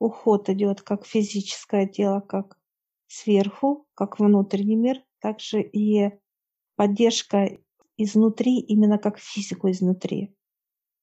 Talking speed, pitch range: 100 wpm, 200-225 Hz